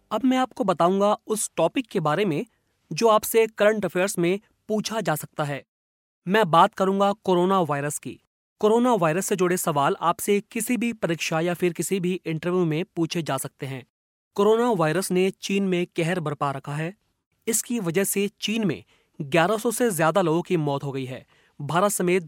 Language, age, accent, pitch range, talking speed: Hindi, 30-49, native, 160-215 Hz, 185 wpm